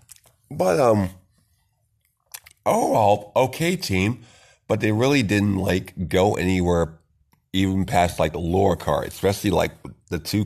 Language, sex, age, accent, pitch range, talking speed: English, male, 50-69, American, 85-110 Hz, 125 wpm